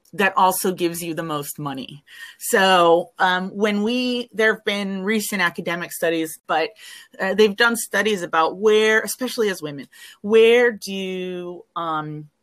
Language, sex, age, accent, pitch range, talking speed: English, female, 30-49, American, 170-220 Hz, 145 wpm